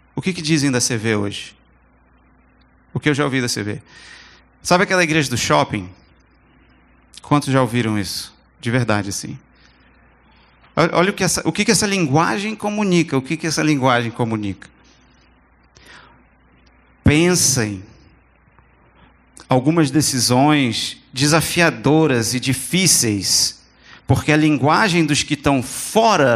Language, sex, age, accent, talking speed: English, male, 40-59, Brazilian, 120 wpm